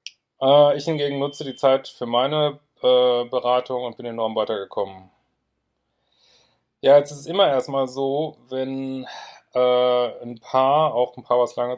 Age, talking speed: 30-49, 150 wpm